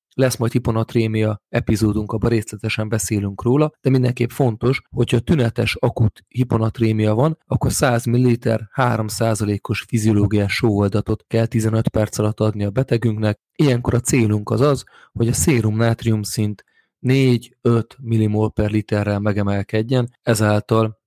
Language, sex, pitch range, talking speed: Hungarian, male, 105-120 Hz, 125 wpm